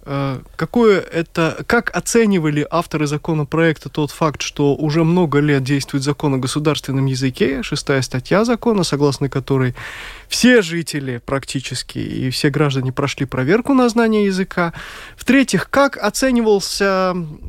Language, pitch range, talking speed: Russian, 135-185 Hz, 115 wpm